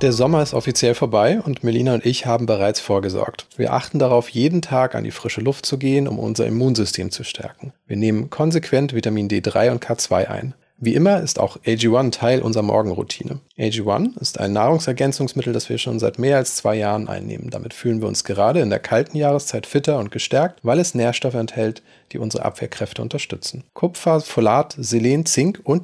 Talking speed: 190 wpm